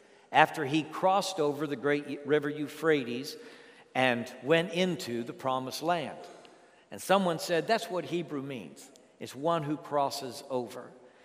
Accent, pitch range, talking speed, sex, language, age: American, 130-155 Hz, 140 wpm, male, English, 60-79